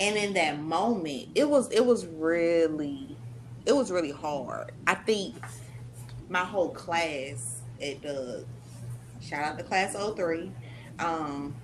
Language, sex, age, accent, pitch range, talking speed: English, female, 20-39, American, 140-185 Hz, 135 wpm